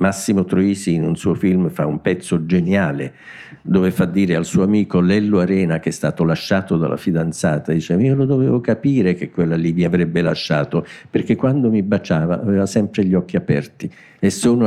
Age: 50-69